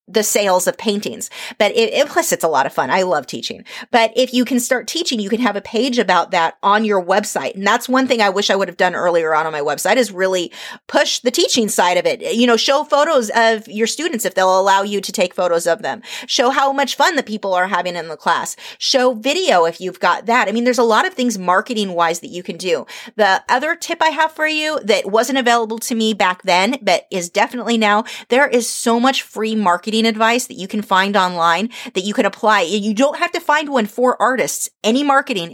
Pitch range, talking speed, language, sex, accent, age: 190-250 Hz, 240 wpm, English, female, American, 30-49